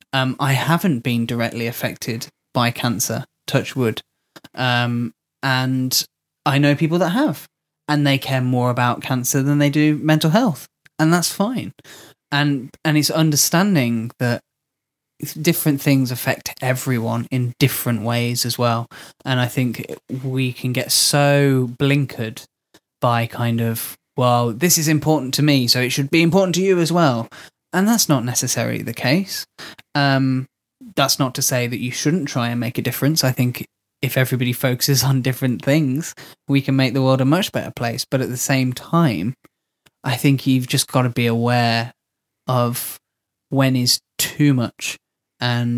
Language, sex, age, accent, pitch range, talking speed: English, male, 10-29, British, 120-145 Hz, 165 wpm